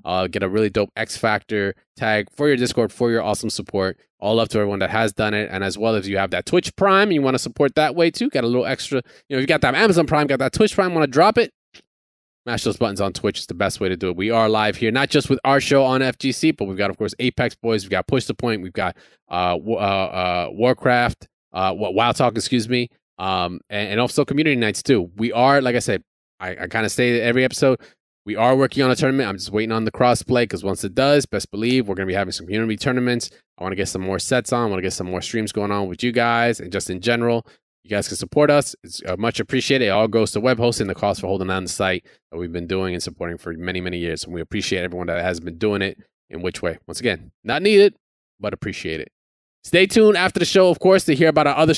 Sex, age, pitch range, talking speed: male, 20-39, 100-135 Hz, 275 wpm